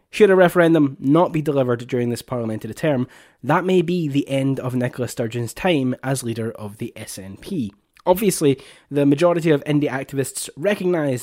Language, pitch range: English, 125-155 Hz